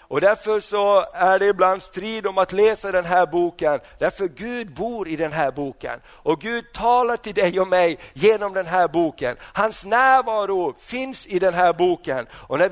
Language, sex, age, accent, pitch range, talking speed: Swedish, male, 50-69, native, 165-210 Hz, 190 wpm